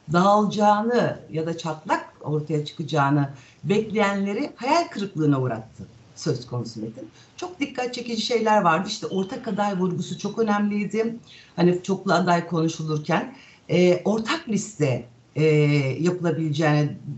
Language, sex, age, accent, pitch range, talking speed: Turkish, female, 60-79, native, 150-205 Hz, 115 wpm